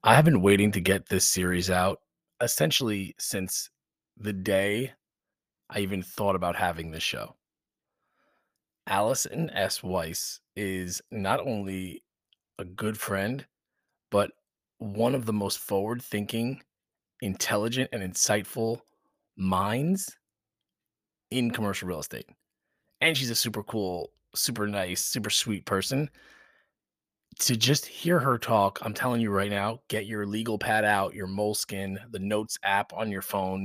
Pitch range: 95-115 Hz